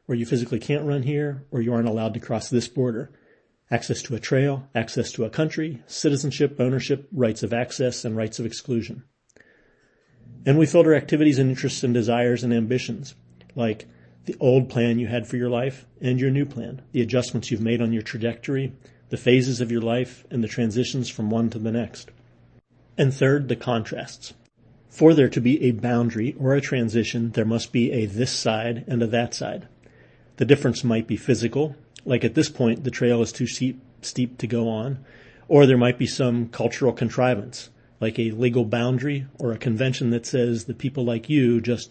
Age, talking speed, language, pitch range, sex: 40-59, 195 wpm, English, 115-130 Hz, male